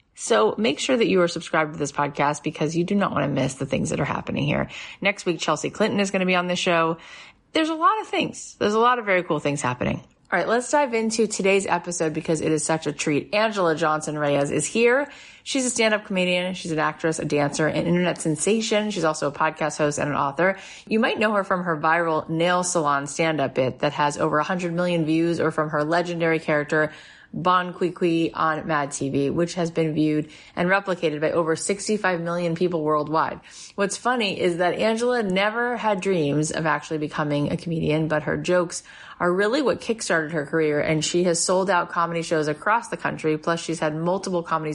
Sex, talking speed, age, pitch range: female, 215 wpm, 30-49, 155-190 Hz